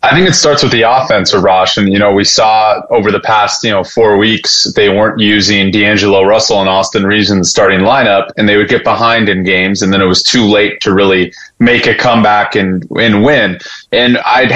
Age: 20-39